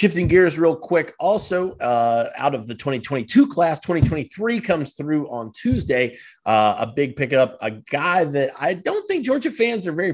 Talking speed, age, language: 180 wpm, 30-49, English